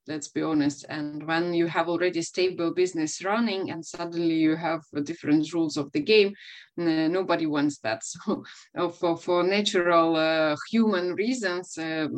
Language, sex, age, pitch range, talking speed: English, female, 20-39, 165-195 Hz, 140 wpm